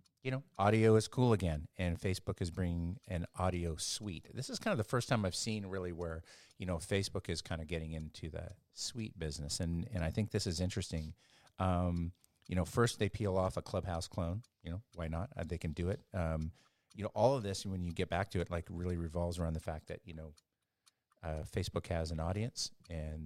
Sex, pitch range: male, 85-100 Hz